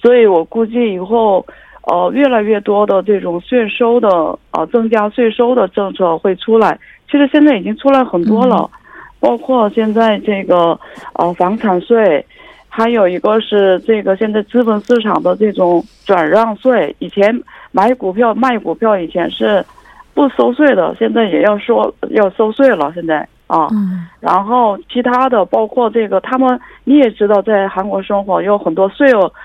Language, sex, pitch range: Korean, female, 195-245 Hz